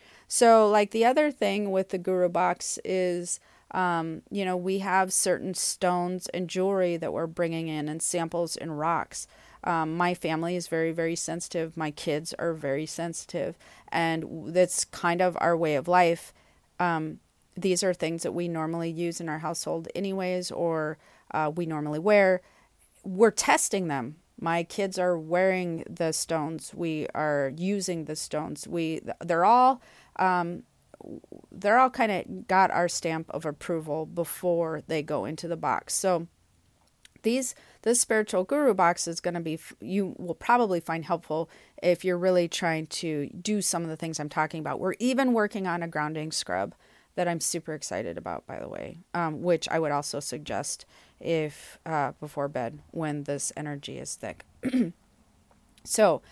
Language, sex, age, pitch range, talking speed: English, female, 40-59, 160-185 Hz, 165 wpm